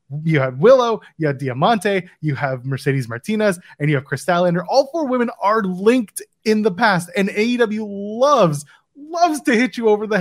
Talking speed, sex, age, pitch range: 180 wpm, male, 20-39, 150-220 Hz